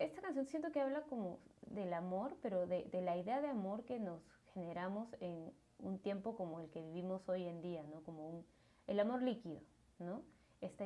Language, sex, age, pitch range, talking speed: Spanish, female, 20-39, 180-205 Hz, 200 wpm